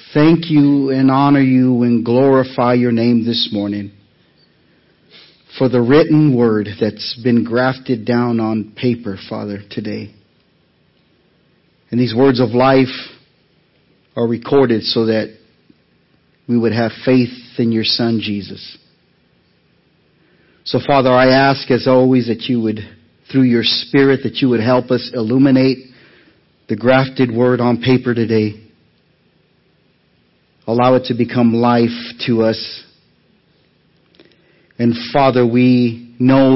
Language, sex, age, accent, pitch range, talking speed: English, male, 50-69, American, 110-130 Hz, 125 wpm